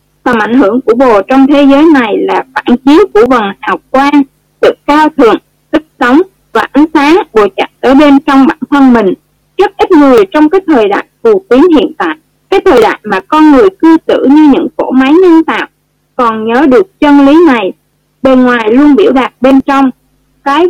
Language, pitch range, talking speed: Vietnamese, 265-355 Hz, 205 wpm